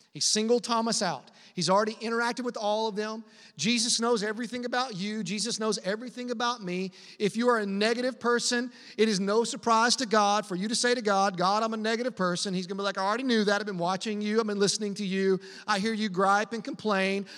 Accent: American